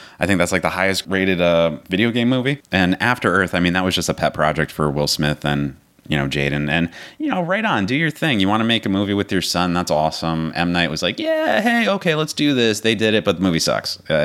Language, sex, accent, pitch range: English, male, American, 80-105 Hz